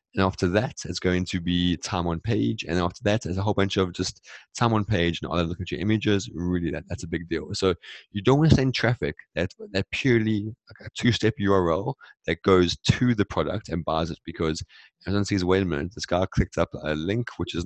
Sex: male